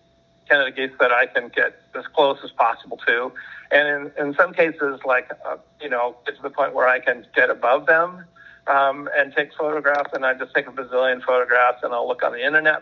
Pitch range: 130-155 Hz